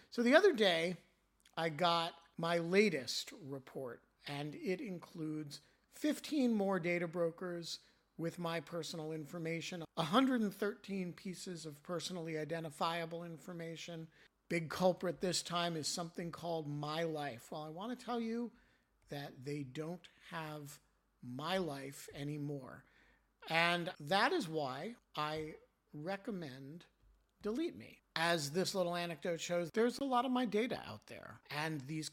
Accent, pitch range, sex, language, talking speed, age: American, 155-195 Hz, male, English, 135 wpm, 50-69